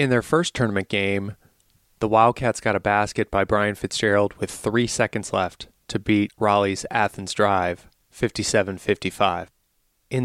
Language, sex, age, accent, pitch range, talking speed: English, male, 30-49, American, 100-120 Hz, 140 wpm